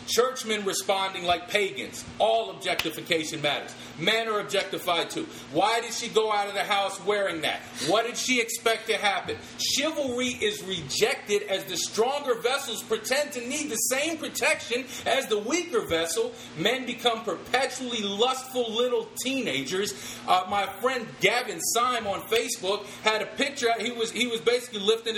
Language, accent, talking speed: English, American, 155 wpm